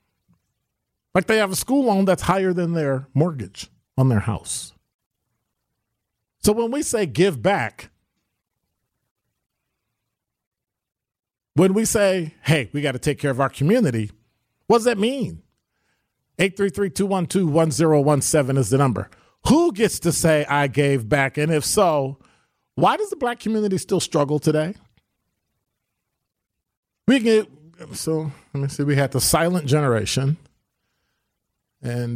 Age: 40-59